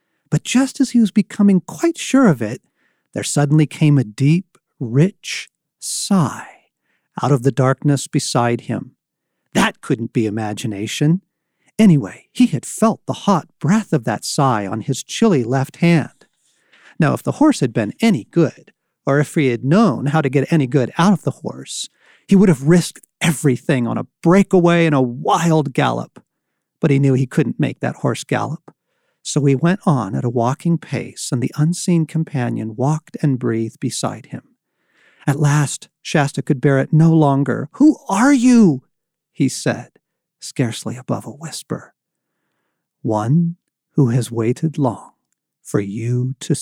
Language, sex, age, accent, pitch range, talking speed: English, male, 40-59, American, 135-175 Hz, 165 wpm